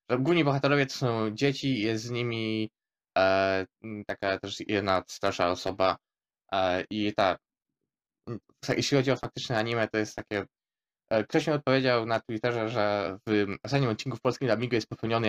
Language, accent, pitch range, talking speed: Polish, native, 105-125 Hz, 165 wpm